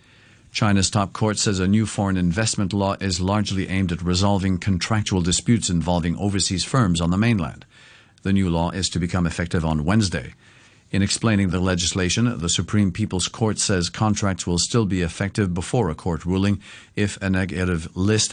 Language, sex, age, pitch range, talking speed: English, male, 50-69, 85-105 Hz, 175 wpm